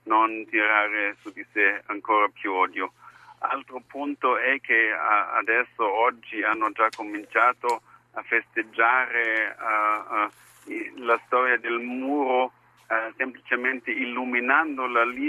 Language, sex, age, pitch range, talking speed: Italian, male, 50-69, 105-125 Hz, 100 wpm